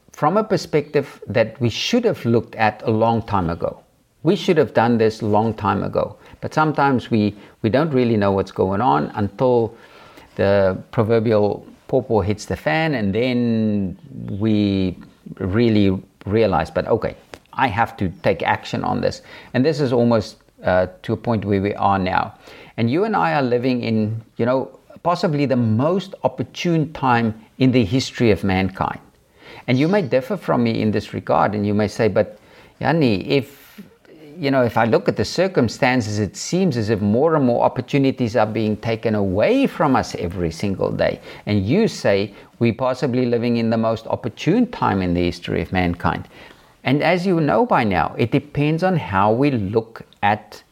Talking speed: 180 wpm